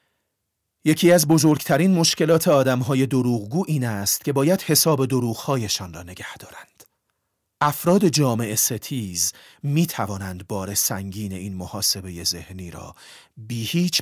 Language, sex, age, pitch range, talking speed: Persian, male, 40-59, 95-150 Hz, 115 wpm